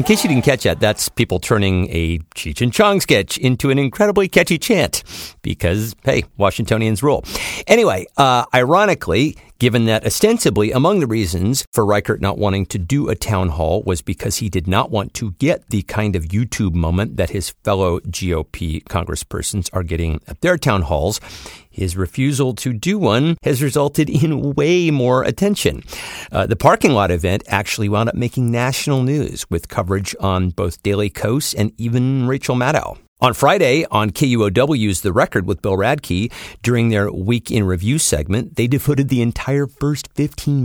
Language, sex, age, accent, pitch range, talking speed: English, male, 50-69, American, 95-135 Hz, 175 wpm